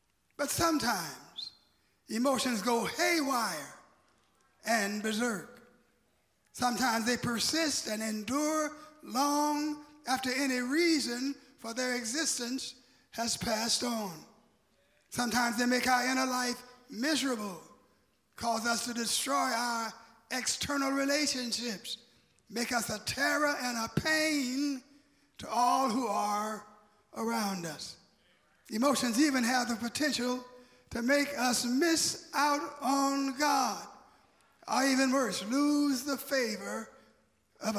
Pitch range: 230-270 Hz